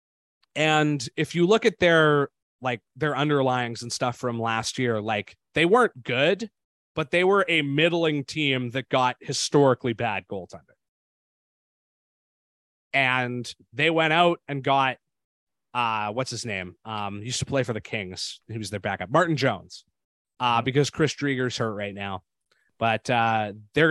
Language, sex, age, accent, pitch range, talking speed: English, male, 20-39, American, 105-140 Hz, 160 wpm